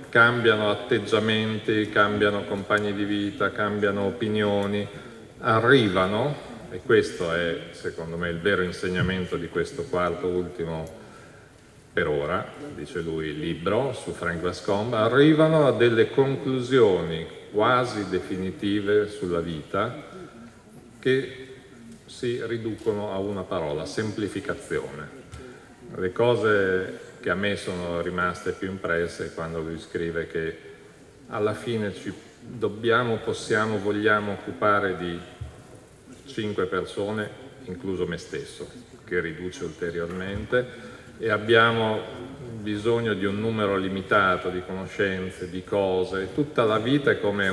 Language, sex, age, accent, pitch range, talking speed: Italian, male, 40-59, native, 95-115 Hz, 110 wpm